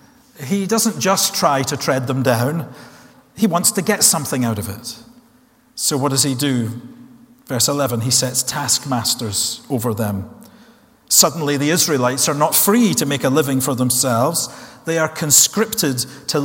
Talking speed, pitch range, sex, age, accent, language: 160 wpm, 125-165 Hz, male, 40-59, British, English